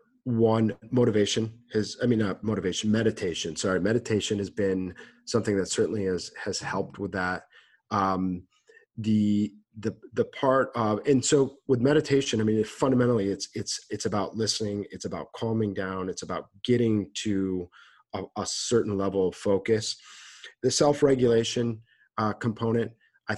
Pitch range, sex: 100-115 Hz, male